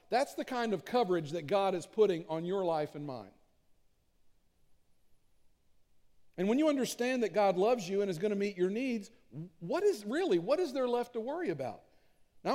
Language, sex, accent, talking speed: English, male, American, 190 wpm